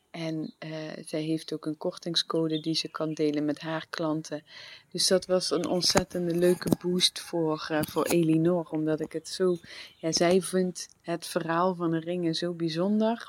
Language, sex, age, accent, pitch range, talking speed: English, female, 30-49, Dutch, 155-180 Hz, 175 wpm